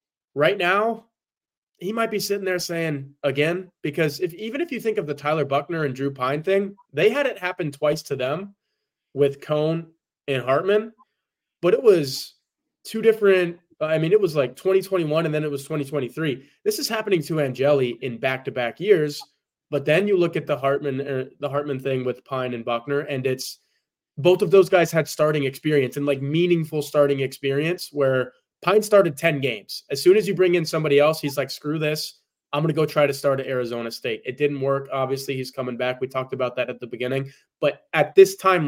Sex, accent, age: male, American, 20-39